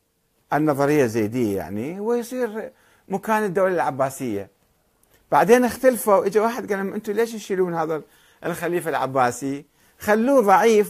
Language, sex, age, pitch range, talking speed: Arabic, male, 50-69, 145-215 Hz, 110 wpm